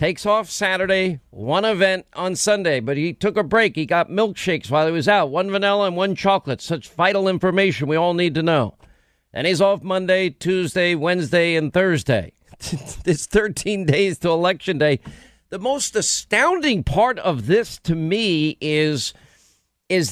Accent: American